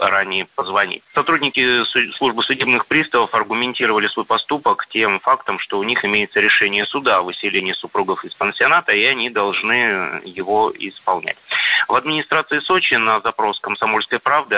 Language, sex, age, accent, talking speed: Russian, male, 30-49, native, 140 wpm